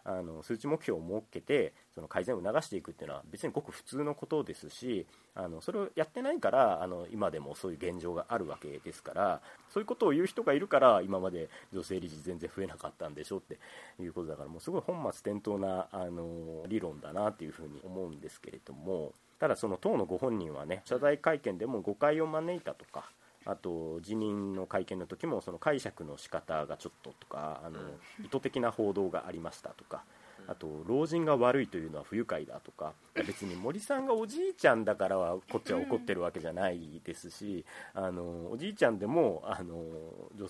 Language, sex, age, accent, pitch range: Japanese, male, 40-59, native, 85-145 Hz